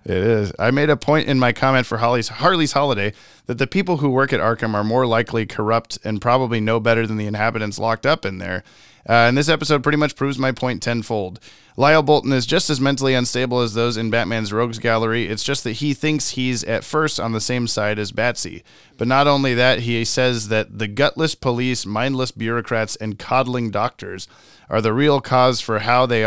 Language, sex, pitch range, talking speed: English, male, 115-135 Hz, 215 wpm